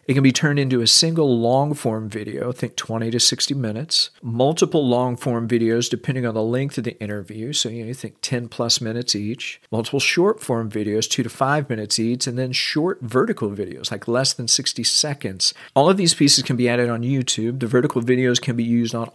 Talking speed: 205 wpm